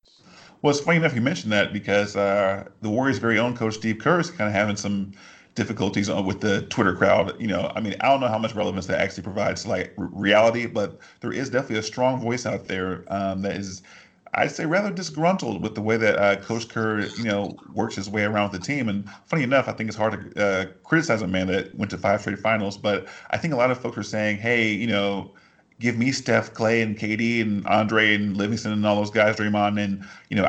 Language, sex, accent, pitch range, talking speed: English, male, American, 100-120 Hz, 240 wpm